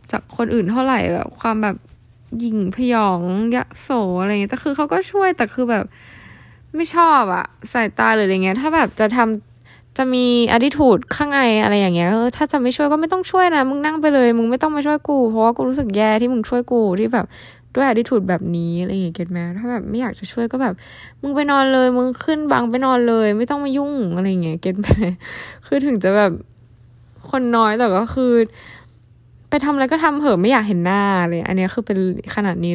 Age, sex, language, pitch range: 10-29, female, Thai, 185-250 Hz